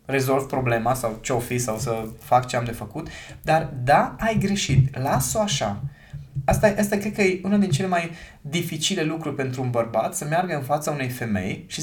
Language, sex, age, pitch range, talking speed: Romanian, male, 20-39, 135-185 Hz, 200 wpm